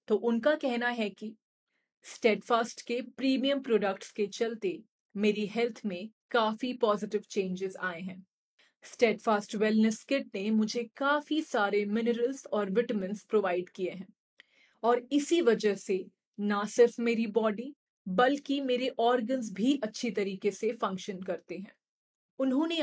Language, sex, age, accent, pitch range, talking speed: Hindi, female, 30-49, native, 210-250 Hz, 130 wpm